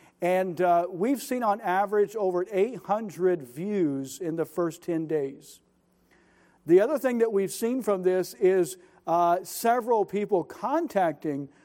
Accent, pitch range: American, 165-200 Hz